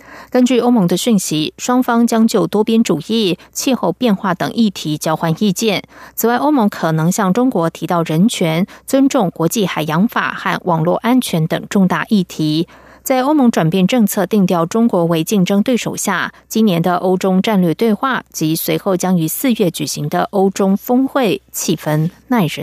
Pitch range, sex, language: 170-230 Hz, female, German